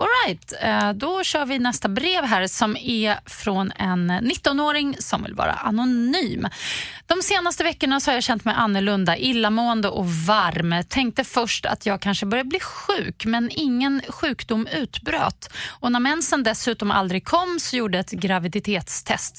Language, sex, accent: English, female, Swedish